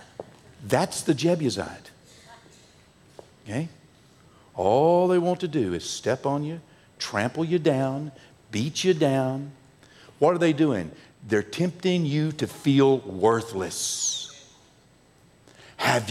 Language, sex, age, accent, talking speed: English, male, 60-79, American, 110 wpm